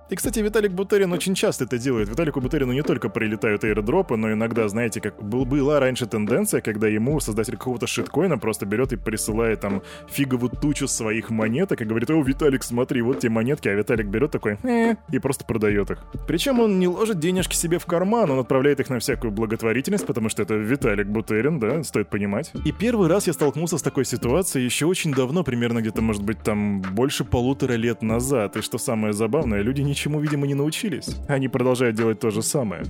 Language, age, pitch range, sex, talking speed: Russian, 20-39, 110-145 Hz, male, 200 wpm